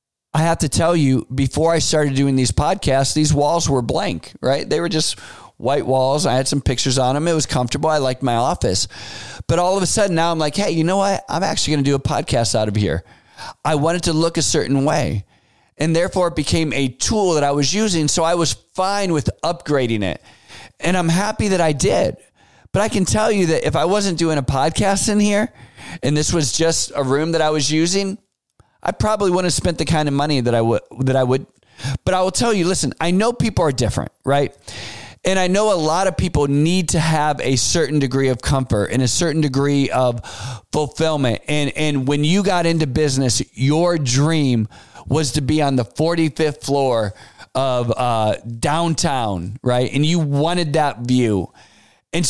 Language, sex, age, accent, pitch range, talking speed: English, male, 40-59, American, 130-170 Hz, 210 wpm